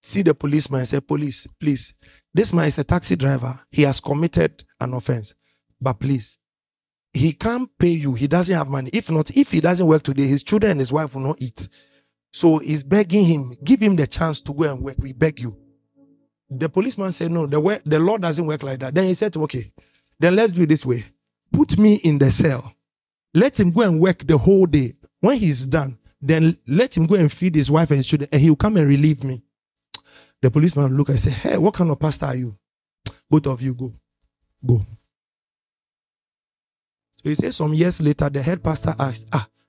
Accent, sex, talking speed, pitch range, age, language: Nigerian, male, 210 wpm, 125-170 Hz, 50-69, English